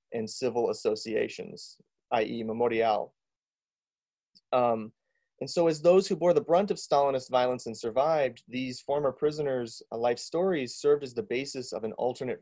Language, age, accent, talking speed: English, 30-49, American, 150 wpm